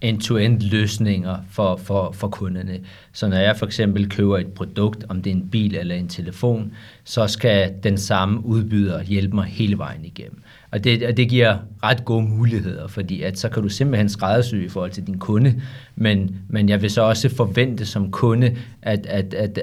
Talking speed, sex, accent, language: 180 wpm, male, native, Danish